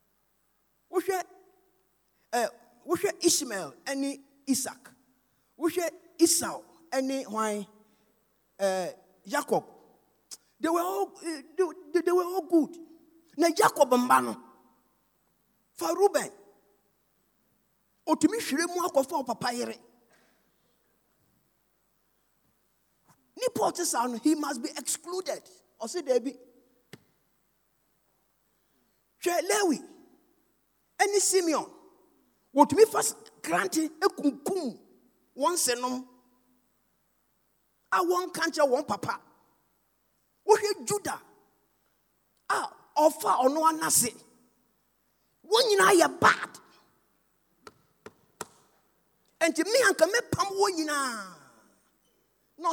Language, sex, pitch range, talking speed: English, male, 250-350 Hz, 90 wpm